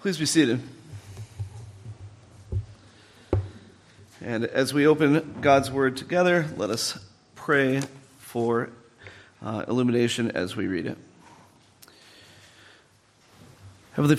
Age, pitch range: 40-59, 110-140 Hz